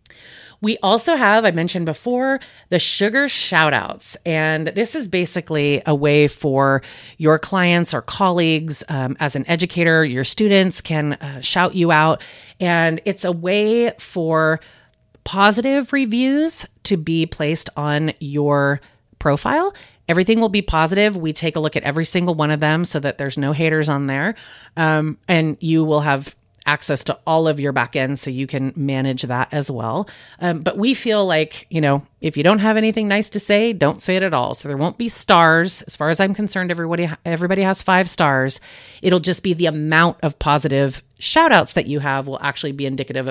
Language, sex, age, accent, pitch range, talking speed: English, female, 30-49, American, 145-190 Hz, 190 wpm